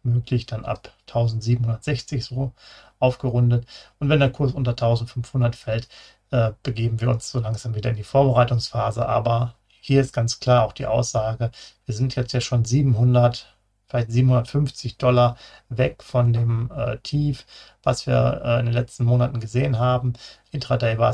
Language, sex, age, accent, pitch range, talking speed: German, male, 40-59, German, 115-125 Hz, 160 wpm